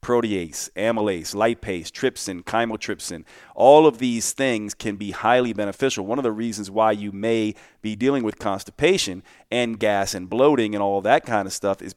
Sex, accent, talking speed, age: male, American, 175 wpm, 40-59